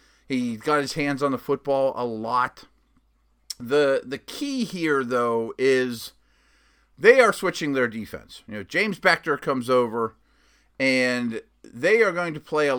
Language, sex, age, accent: English, male, 50-69, American